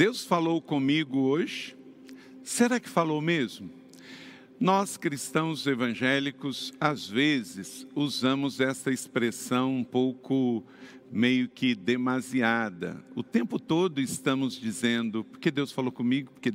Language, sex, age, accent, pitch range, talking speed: Portuguese, male, 50-69, Brazilian, 130-160 Hz, 110 wpm